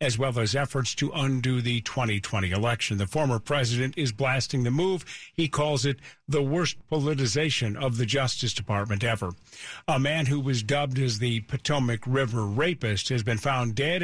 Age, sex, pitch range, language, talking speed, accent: 50-69, male, 115-150 Hz, English, 175 wpm, American